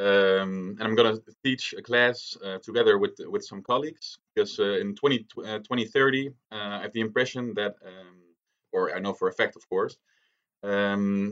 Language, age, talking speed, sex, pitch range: English, 20-39, 190 wpm, male, 105-140 Hz